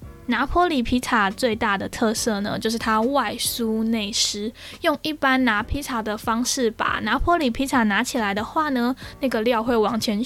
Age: 10-29